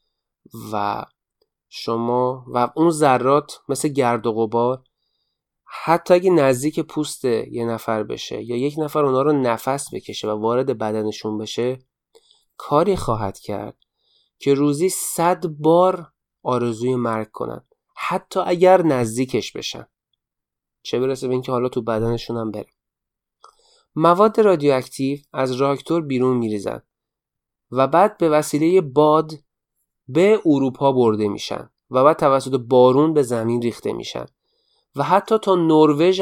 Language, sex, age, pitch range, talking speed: Persian, male, 30-49, 120-155 Hz, 130 wpm